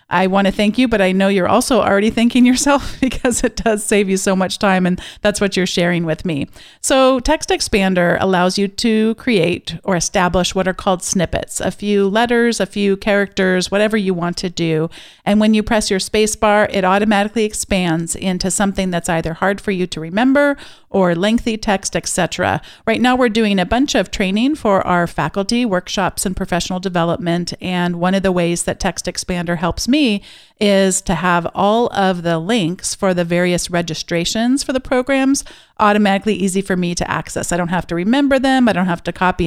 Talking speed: 200 wpm